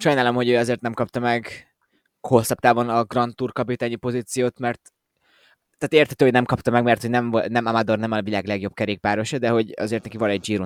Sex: male